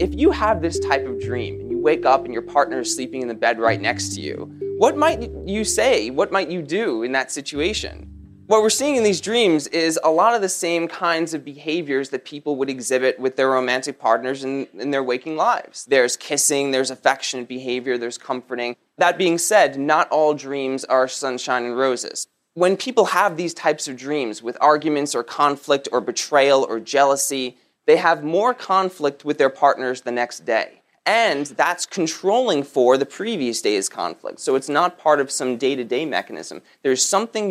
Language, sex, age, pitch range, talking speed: English, male, 20-39, 130-170 Hz, 195 wpm